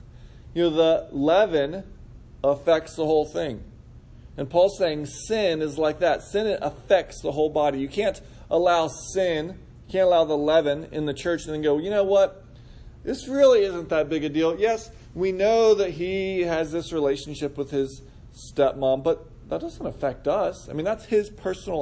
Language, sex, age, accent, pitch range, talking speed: English, male, 40-59, American, 135-165 Hz, 180 wpm